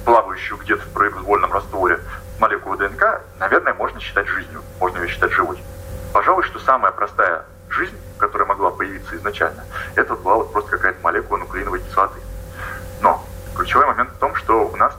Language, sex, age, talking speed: Russian, male, 20-39, 155 wpm